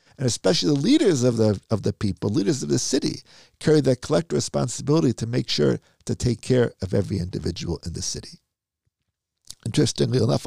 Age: 50-69